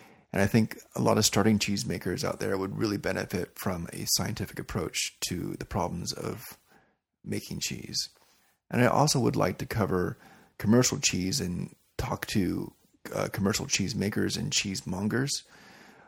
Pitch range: 100-115 Hz